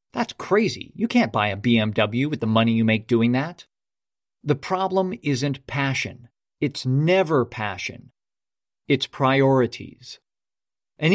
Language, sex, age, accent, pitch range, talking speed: English, male, 40-59, American, 125-185 Hz, 130 wpm